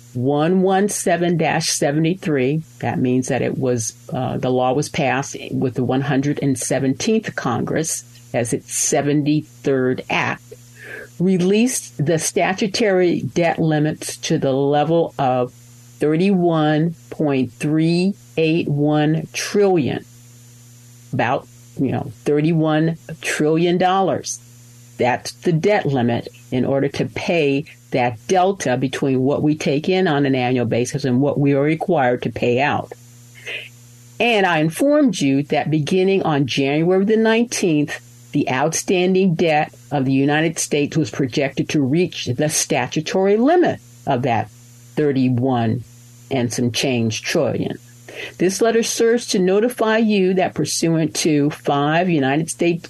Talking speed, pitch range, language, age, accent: 120 wpm, 125-170 Hz, English, 50-69, American